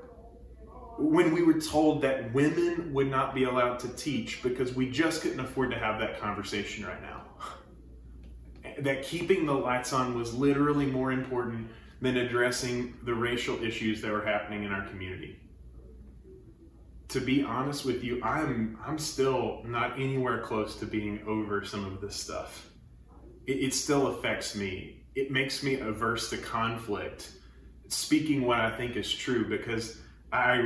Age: 30-49